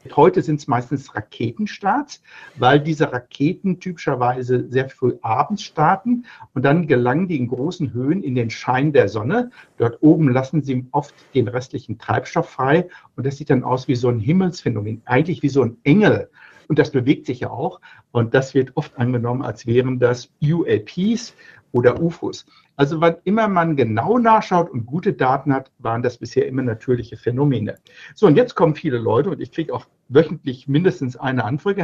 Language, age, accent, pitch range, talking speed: German, 60-79, German, 125-170 Hz, 180 wpm